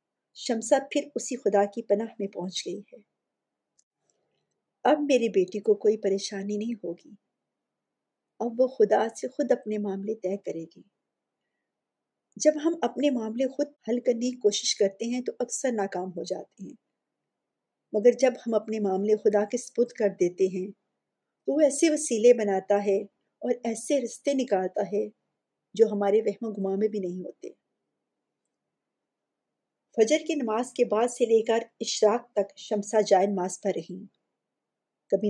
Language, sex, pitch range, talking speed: Urdu, female, 200-245 Hz, 155 wpm